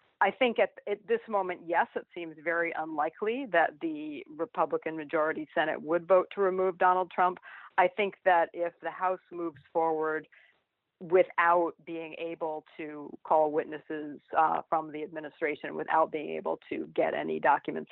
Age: 50-69